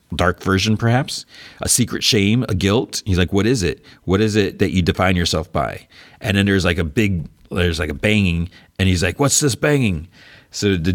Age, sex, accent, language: 40-59, male, American, English